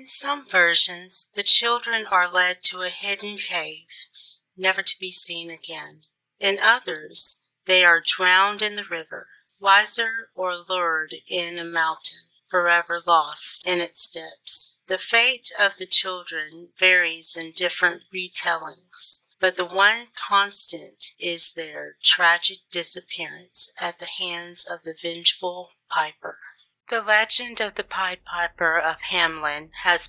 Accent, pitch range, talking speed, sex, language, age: American, 165-185 Hz, 135 wpm, female, English, 40-59